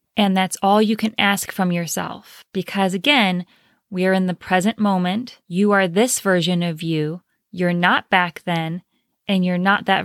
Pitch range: 180-225 Hz